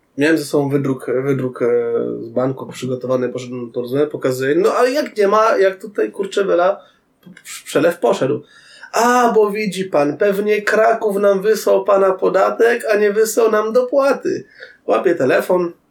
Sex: male